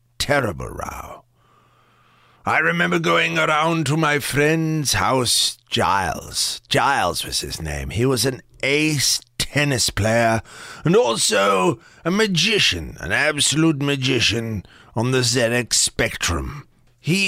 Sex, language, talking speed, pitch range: male, English, 115 wpm, 85-145 Hz